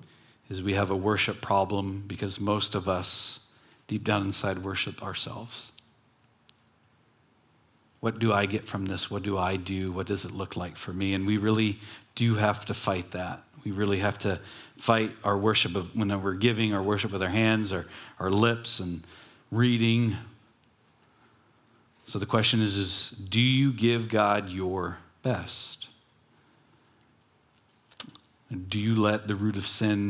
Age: 40-59